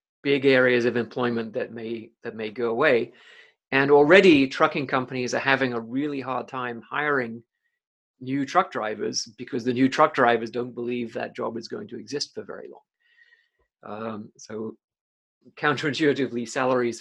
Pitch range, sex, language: 120-150 Hz, male, English